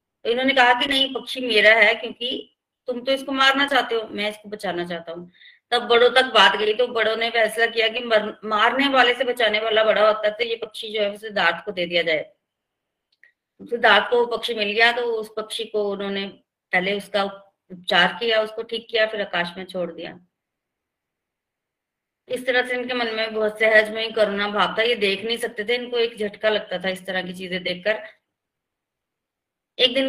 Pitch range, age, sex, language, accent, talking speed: 200-245 Hz, 30-49, female, Hindi, native, 205 wpm